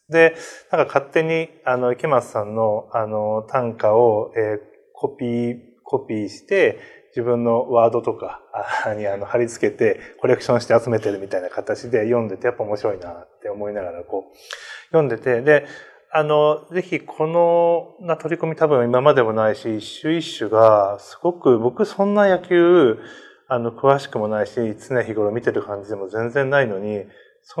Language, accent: Japanese, native